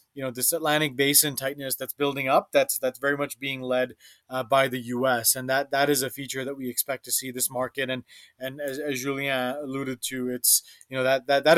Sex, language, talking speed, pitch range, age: male, English, 235 wpm, 130-150 Hz, 30-49